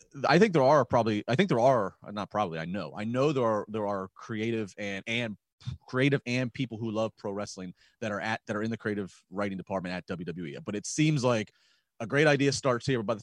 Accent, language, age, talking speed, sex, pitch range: American, English, 30-49, 240 wpm, male, 105-130 Hz